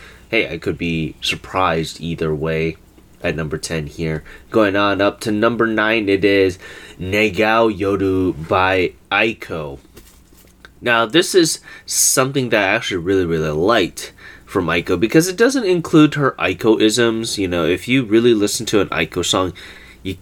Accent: American